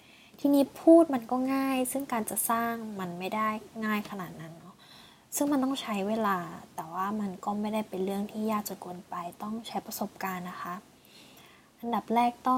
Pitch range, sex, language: 190-235 Hz, female, Thai